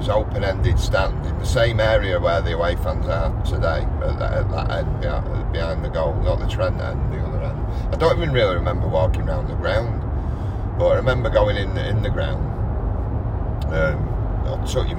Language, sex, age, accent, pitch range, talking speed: English, male, 50-69, British, 95-110 Hz, 195 wpm